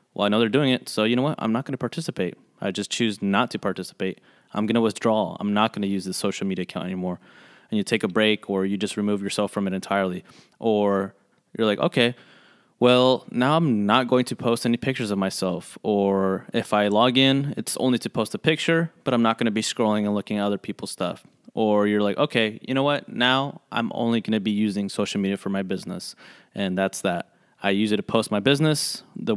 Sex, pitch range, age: male, 105-120 Hz, 20-39